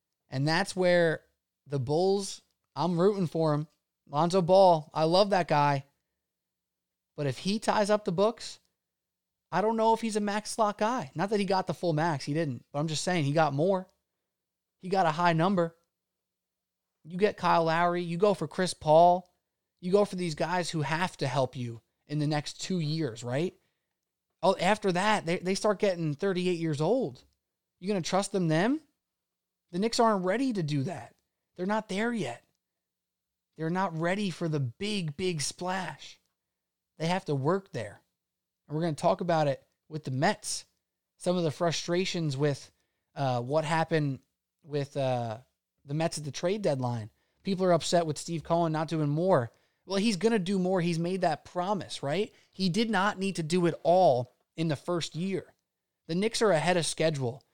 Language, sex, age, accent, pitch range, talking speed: English, male, 20-39, American, 150-190 Hz, 190 wpm